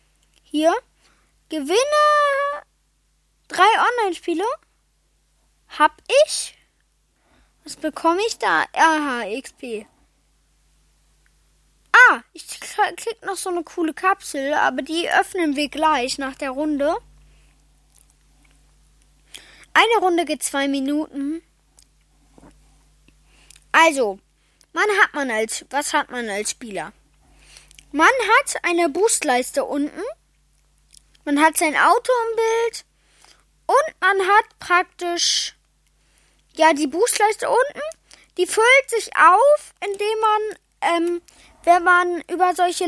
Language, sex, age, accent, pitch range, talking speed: English, female, 10-29, German, 305-415 Hz, 100 wpm